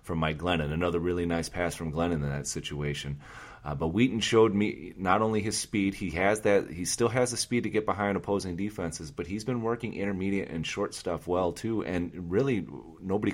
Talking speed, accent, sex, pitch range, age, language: 210 wpm, American, male, 80-95 Hz, 30-49, English